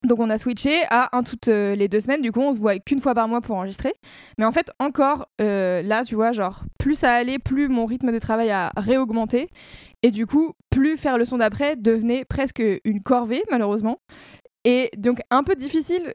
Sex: female